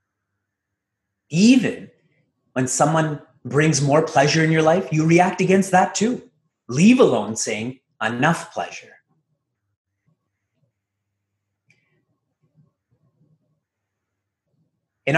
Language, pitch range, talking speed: English, 110-155 Hz, 80 wpm